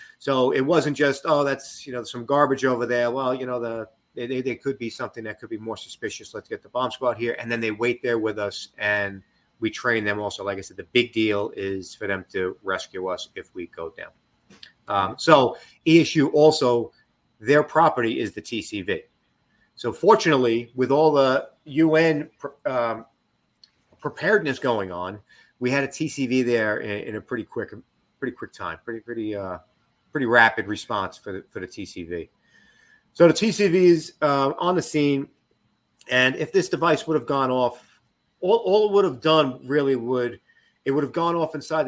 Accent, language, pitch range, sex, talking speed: American, English, 115-150 Hz, male, 190 wpm